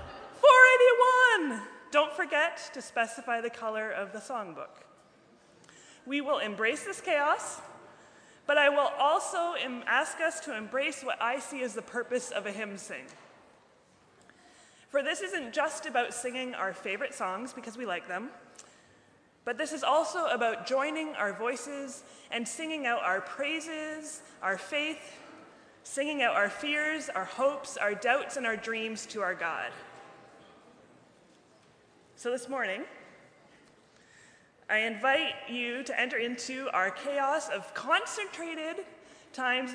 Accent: American